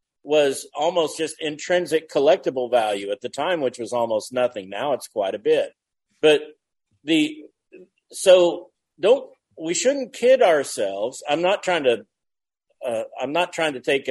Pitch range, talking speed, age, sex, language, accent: 120-175 Hz, 155 wpm, 50-69, male, English, American